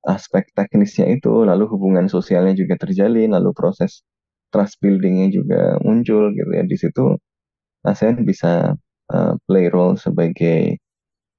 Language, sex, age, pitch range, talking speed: Indonesian, male, 20-39, 90-115 Hz, 125 wpm